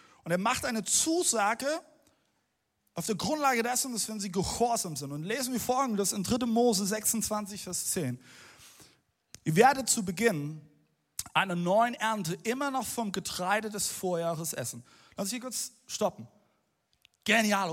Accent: German